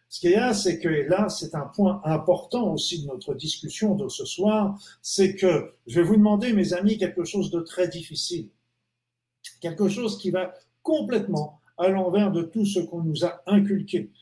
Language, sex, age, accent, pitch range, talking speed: French, male, 50-69, French, 150-205 Hz, 195 wpm